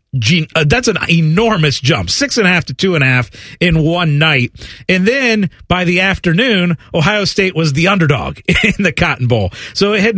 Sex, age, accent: male, 40-59, American